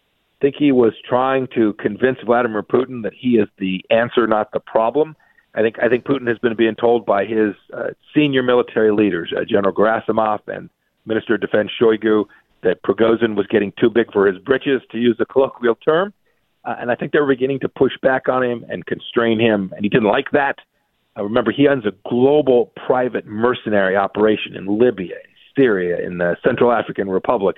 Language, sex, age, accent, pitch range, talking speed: English, male, 50-69, American, 110-135 Hz, 195 wpm